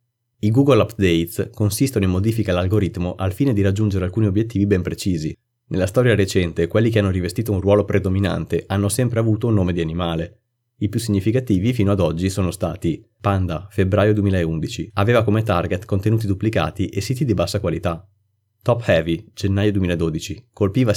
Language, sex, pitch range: Italian, male, 95-110 Hz